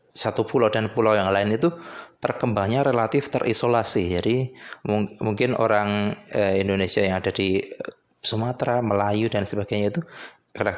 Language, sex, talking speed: Indonesian, male, 130 wpm